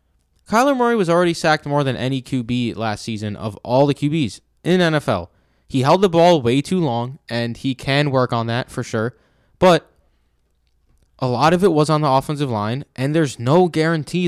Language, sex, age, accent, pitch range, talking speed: English, male, 20-39, American, 110-155 Hz, 195 wpm